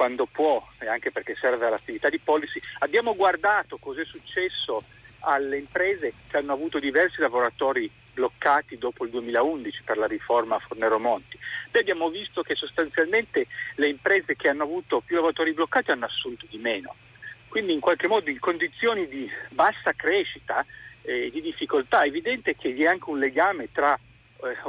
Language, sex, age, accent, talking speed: Italian, male, 50-69, native, 165 wpm